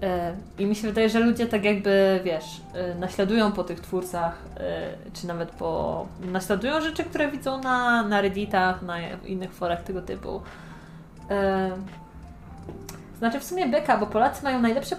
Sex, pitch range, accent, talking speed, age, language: female, 185-260 Hz, native, 145 wpm, 20-39, Polish